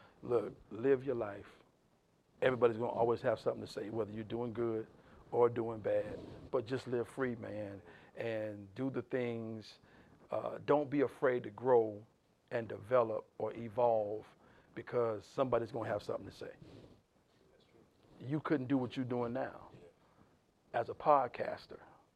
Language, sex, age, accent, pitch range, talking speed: English, male, 50-69, American, 110-130 Hz, 150 wpm